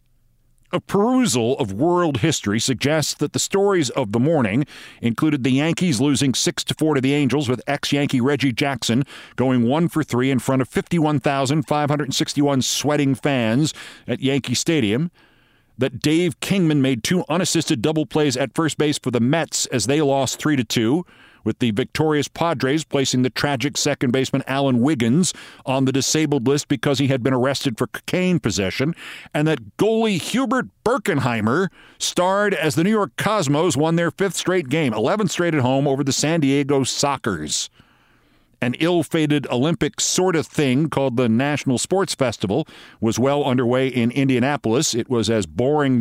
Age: 40-59